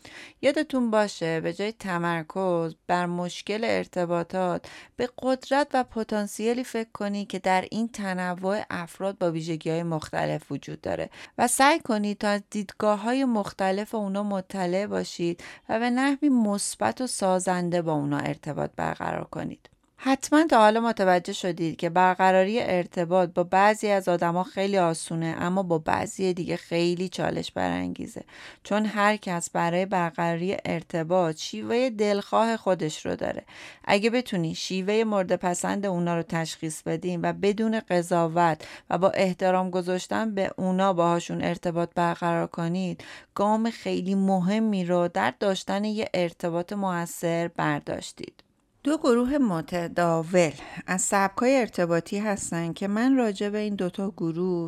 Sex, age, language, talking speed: female, 30-49, Persian, 135 wpm